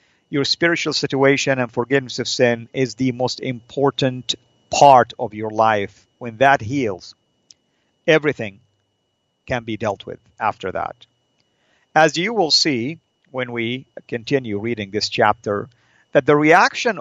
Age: 50-69